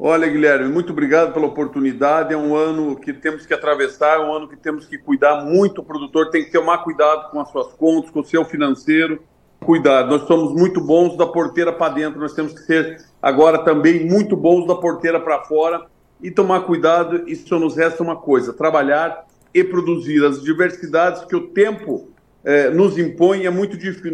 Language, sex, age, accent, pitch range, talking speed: Portuguese, male, 50-69, Brazilian, 150-170 Hz, 195 wpm